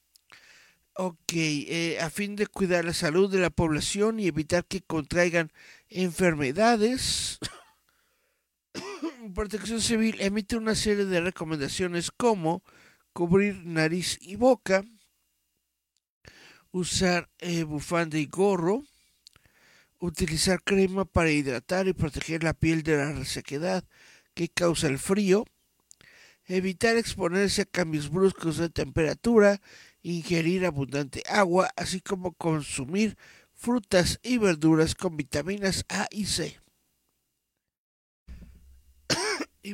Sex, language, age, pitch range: male, Spanish, 60-79, 155-195 Hz